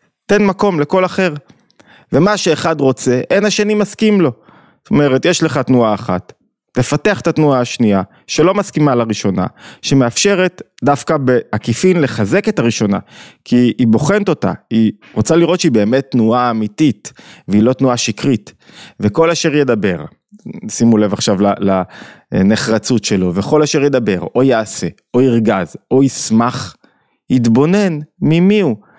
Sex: male